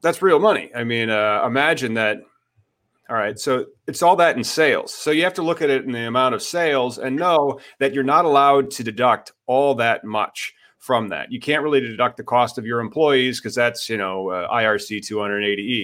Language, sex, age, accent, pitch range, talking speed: English, male, 30-49, American, 110-140 Hz, 215 wpm